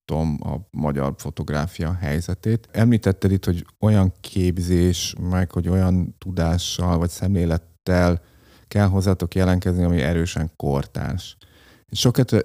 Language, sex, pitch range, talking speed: Hungarian, male, 85-100 Hz, 105 wpm